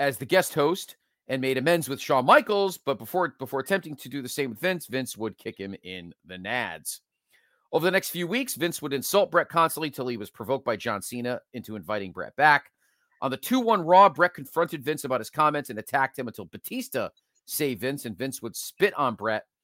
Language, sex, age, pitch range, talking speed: English, male, 40-59, 120-170 Hz, 215 wpm